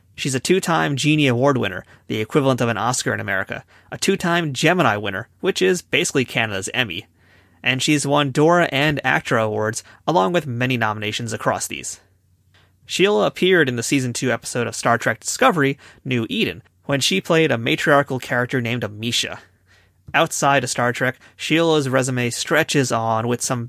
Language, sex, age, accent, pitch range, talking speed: English, male, 30-49, American, 110-145 Hz, 165 wpm